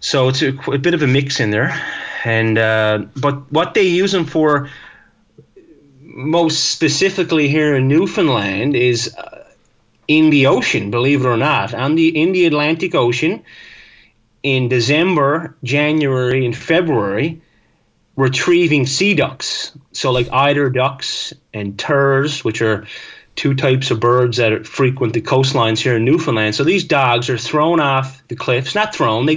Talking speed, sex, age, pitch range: 155 wpm, male, 30-49, 120-150 Hz